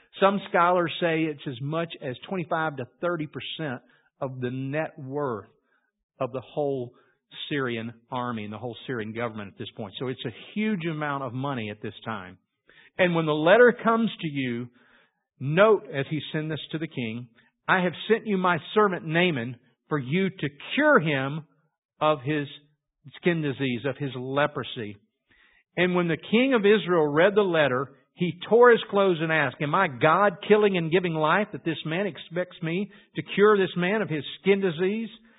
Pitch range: 135-185 Hz